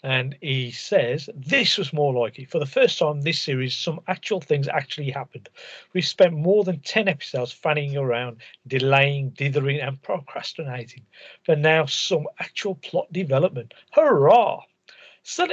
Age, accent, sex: 50-69, British, male